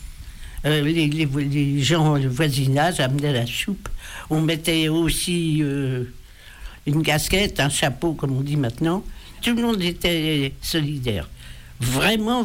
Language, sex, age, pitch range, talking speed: French, male, 60-79, 120-175 Hz, 135 wpm